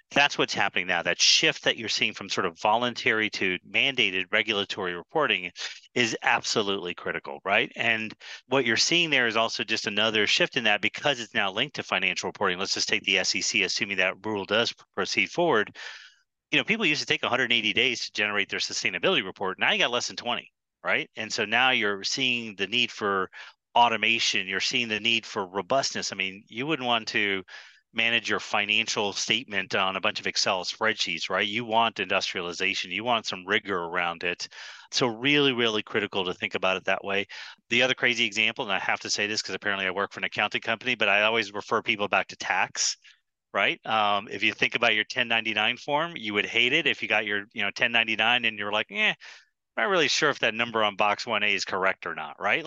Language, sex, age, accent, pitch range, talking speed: English, male, 30-49, American, 100-120 Hz, 215 wpm